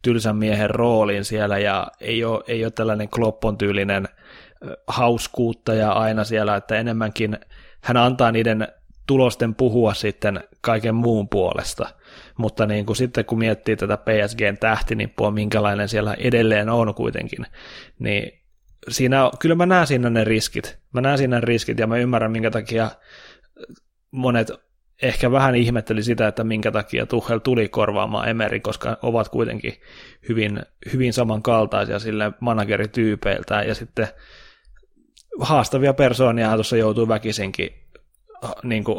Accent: native